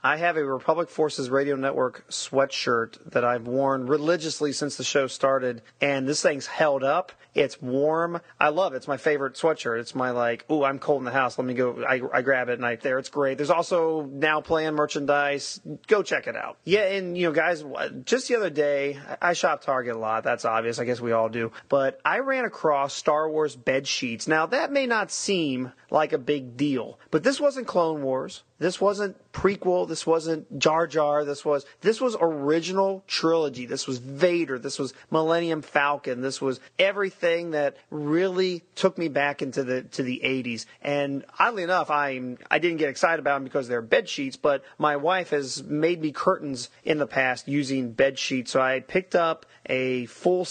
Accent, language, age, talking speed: American, English, 30-49, 200 wpm